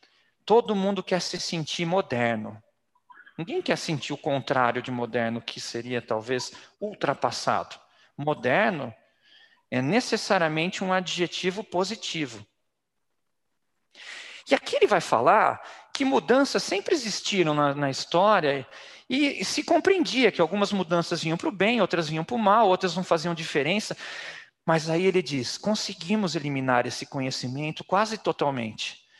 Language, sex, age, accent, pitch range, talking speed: Portuguese, male, 40-59, Brazilian, 130-190 Hz, 135 wpm